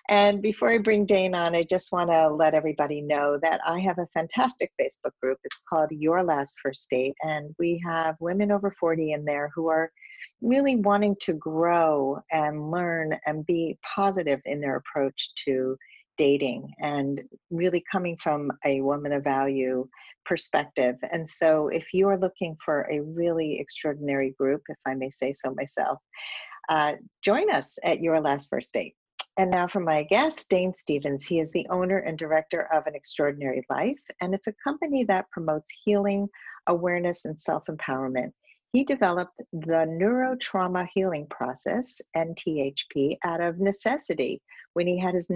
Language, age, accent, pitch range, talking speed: English, 50-69, American, 150-190 Hz, 165 wpm